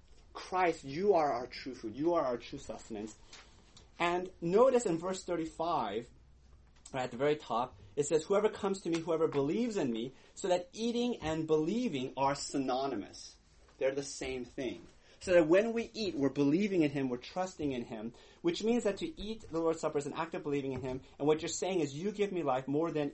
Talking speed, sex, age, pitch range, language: 205 wpm, male, 30-49, 120-175 Hz, English